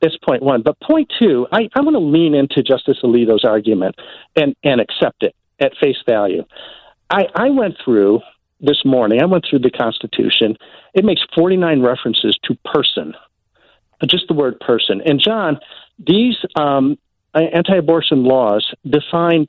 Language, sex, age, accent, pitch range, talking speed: English, male, 50-69, American, 130-170 Hz, 150 wpm